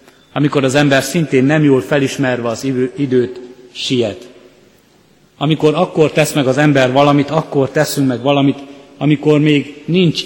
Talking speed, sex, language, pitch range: 140 wpm, male, Hungarian, 120-145 Hz